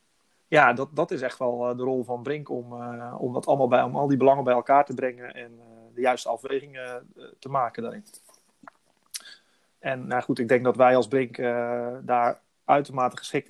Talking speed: 175 wpm